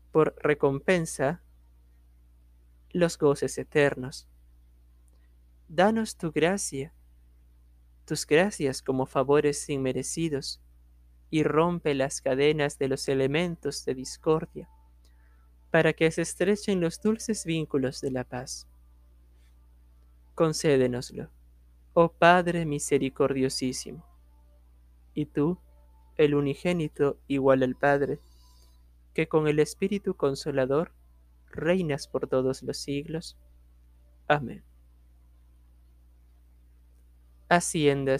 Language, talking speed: Spanish, 85 wpm